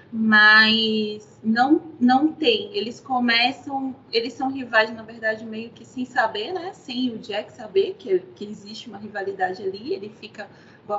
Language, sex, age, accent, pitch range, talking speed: Portuguese, female, 20-39, Brazilian, 220-285 Hz, 160 wpm